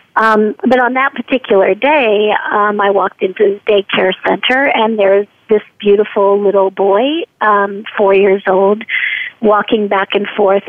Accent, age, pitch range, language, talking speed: American, 50-69, 205-265 Hz, English, 150 wpm